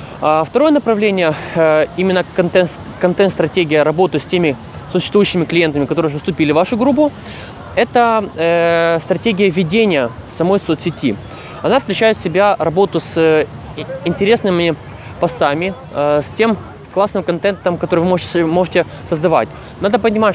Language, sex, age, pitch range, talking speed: Russian, male, 20-39, 155-195 Hz, 120 wpm